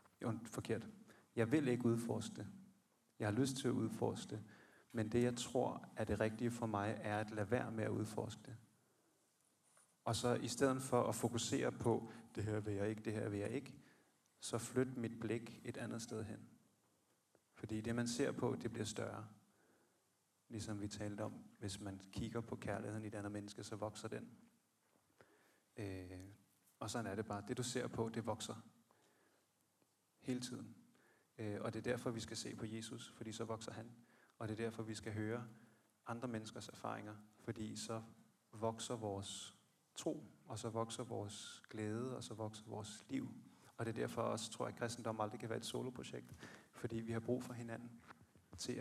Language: Danish